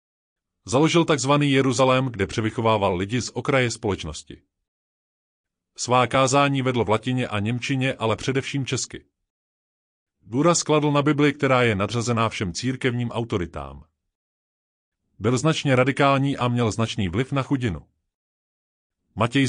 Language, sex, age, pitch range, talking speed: Czech, male, 30-49, 95-135 Hz, 120 wpm